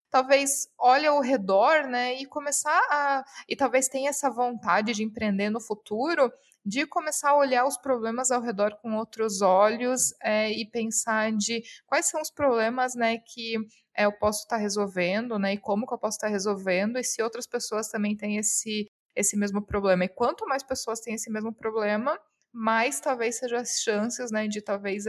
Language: Portuguese